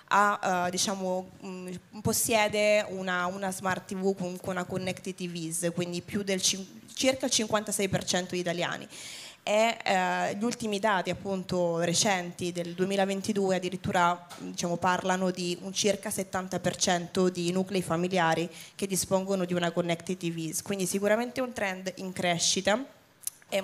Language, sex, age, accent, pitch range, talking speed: Italian, female, 20-39, native, 180-200 Hz, 140 wpm